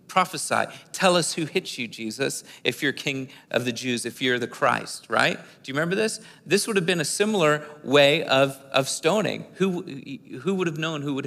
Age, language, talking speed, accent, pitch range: 40-59, English, 210 wpm, American, 135-175 Hz